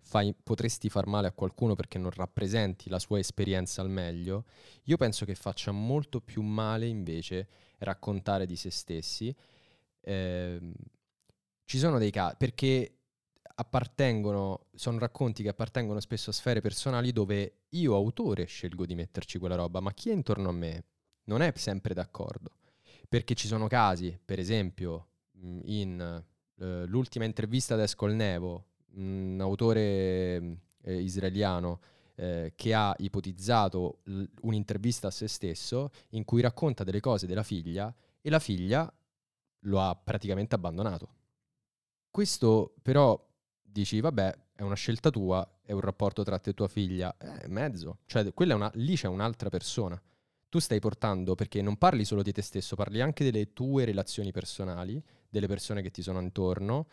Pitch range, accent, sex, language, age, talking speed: 95-115 Hz, native, male, Italian, 20-39, 155 wpm